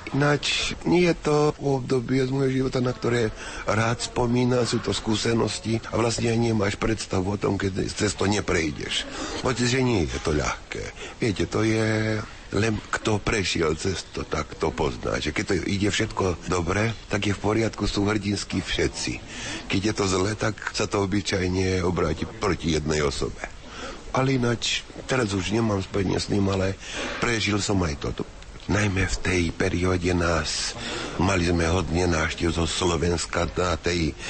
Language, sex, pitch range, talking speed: Slovak, male, 85-105 Hz, 160 wpm